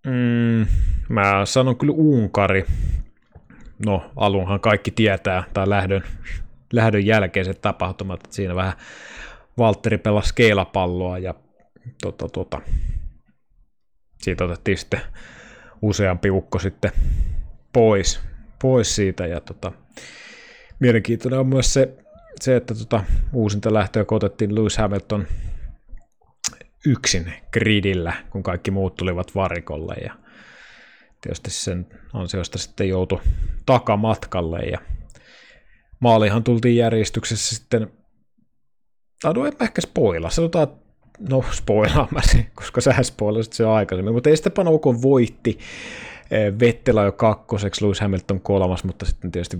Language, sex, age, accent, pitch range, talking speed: Finnish, male, 20-39, native, 90-120 Hz, 110 wpm